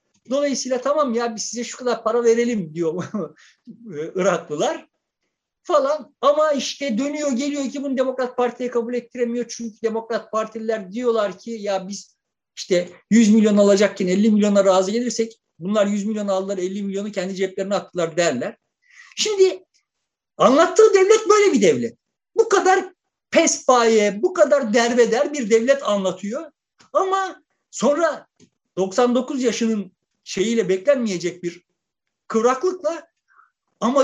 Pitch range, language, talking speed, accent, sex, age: 200-295 Hz, Turkish, 125 wpm, native, male, 50-69